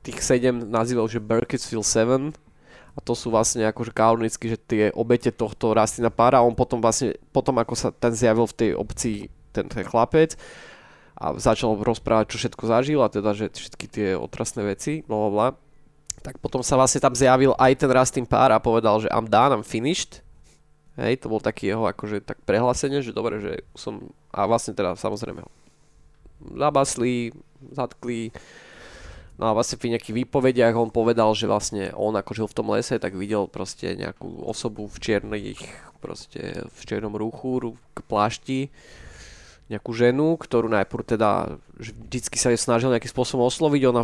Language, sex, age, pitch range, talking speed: Slovak, male, 20-39, 110-130 Hz, 165 wpm